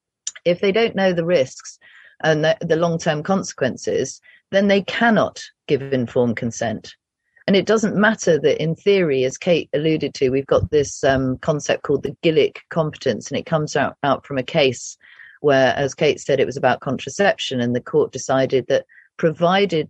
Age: 40-59